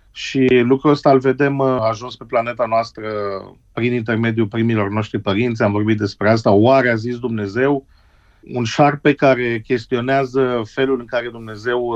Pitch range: 115-140 Hz